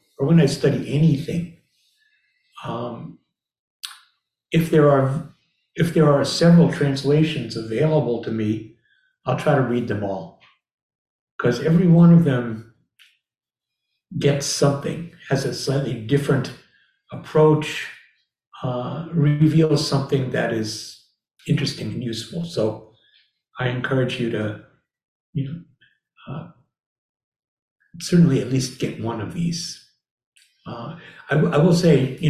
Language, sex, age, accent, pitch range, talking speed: English, male, 60-79, American, 130-165 Hz, 115 wpm